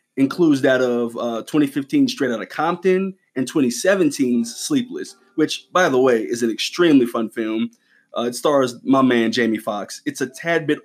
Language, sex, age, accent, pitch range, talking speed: English, male, 20-39, American, 125-195 Hz, 170 wpm